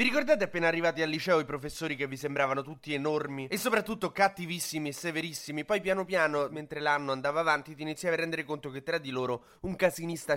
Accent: native